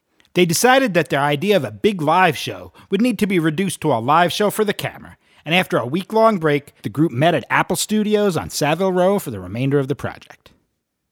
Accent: American